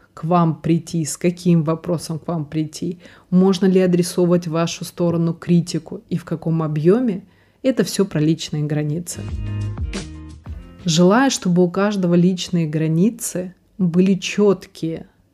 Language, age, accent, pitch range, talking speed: Russian, 20-39, native, 160-185 Hz, 125 wpm